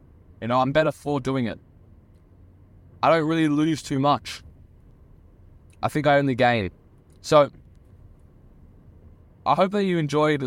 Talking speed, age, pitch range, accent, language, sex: 140 wpm, 20-39, 95-140 Hz, Australian, English, male